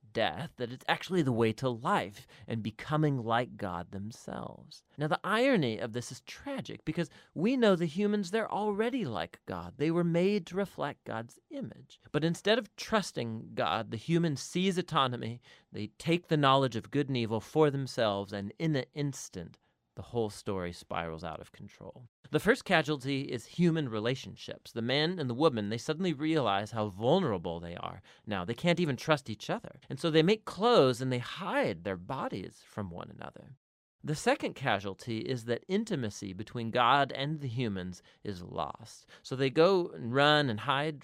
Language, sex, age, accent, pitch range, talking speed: English, male, 40-59, American, 115-165 Hz, 180 wpm